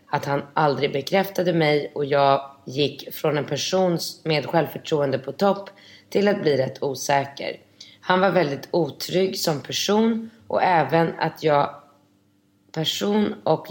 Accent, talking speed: native, 140 wpm